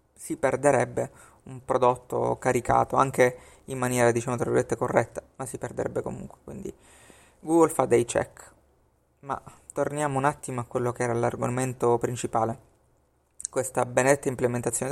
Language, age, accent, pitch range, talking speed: Italian, 30-49, native, 115-140 Hz, 135 wpm